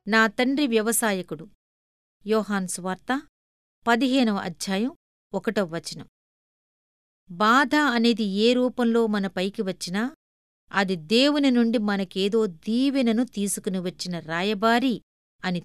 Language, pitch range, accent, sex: Telugu, 190-245 Hz, native, female